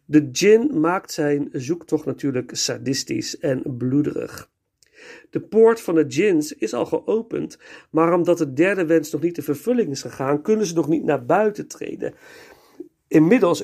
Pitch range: 145-220 Hz